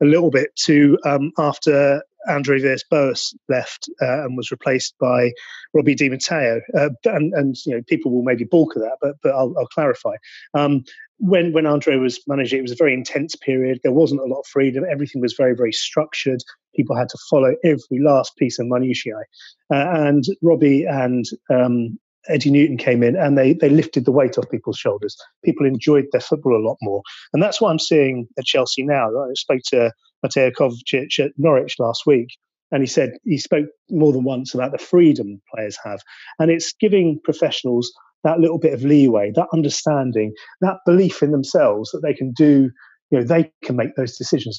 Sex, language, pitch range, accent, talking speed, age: male, English, 125-160 Hz, British, 200 wpm, 30-49